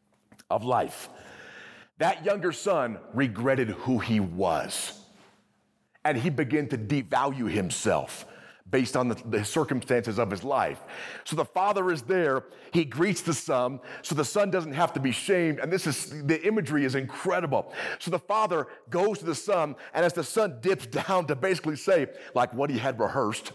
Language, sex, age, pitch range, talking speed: English, male, 40-59, 140-205 Hz, 175 wpm